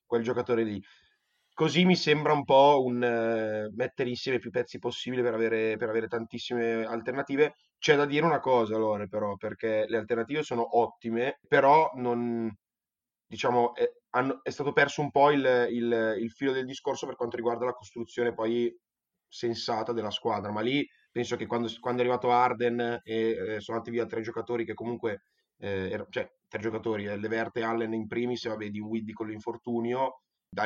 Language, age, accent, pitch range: Italian, 20-39, native, 110-125 Hz